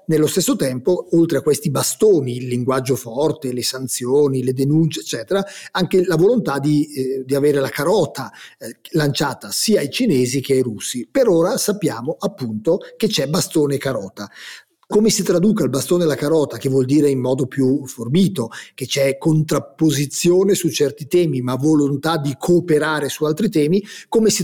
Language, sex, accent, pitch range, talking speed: Italian, male, native, 130-165 Hz, 170 wpm